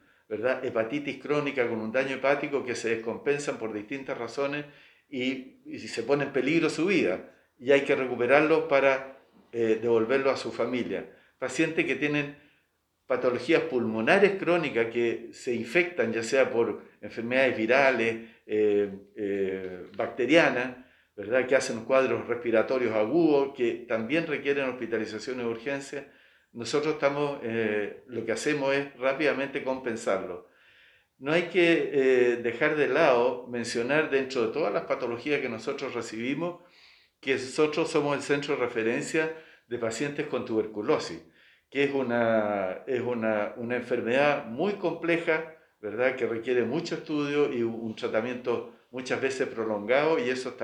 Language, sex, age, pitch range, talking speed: Spanish, male, 50-69, 115-145 Hz, 140 wpm